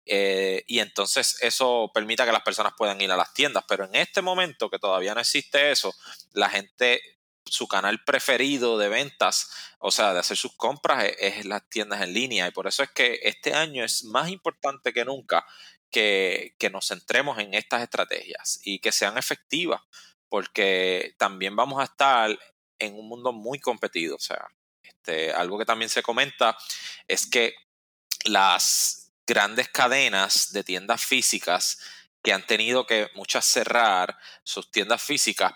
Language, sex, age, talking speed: Spanish, male, 20-39, 165 wpm